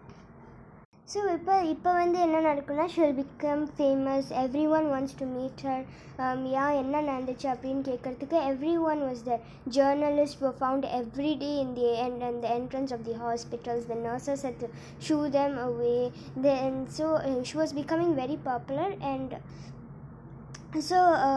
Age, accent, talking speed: 20-39, native, 140 wpm